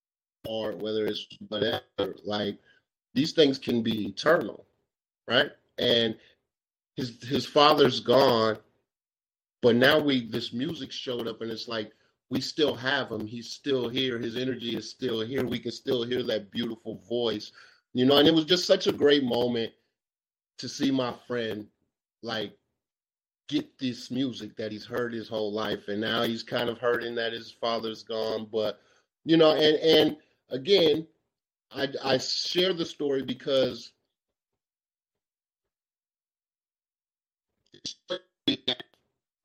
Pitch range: 110-135 Hz